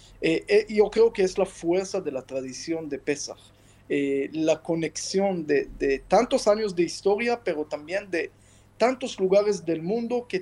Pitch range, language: 160-205 Hz, Spanish